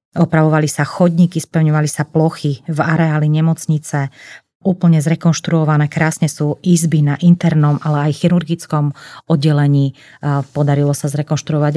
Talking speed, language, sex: 115 wpm, Slovak, female